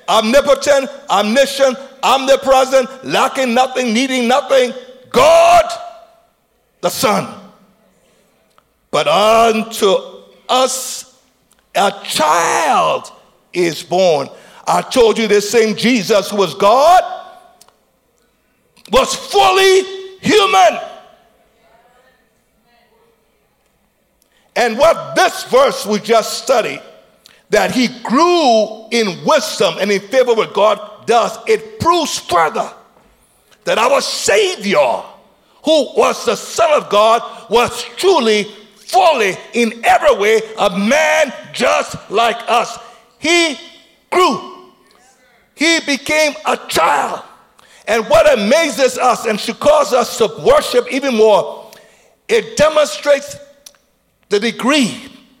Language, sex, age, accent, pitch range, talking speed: English, male, 60-79, American, 225-315 Hz, 100 wpm